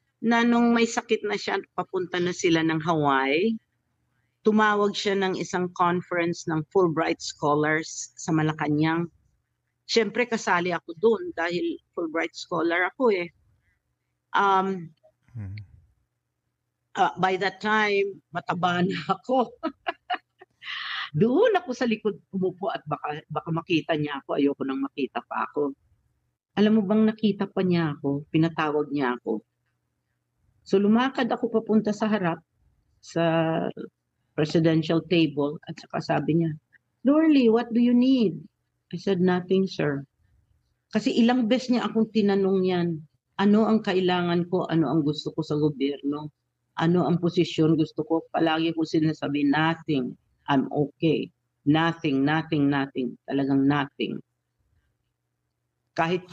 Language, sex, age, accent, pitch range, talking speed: Filipino, female, 50-69, native, 145-200 Hz, 130 wpm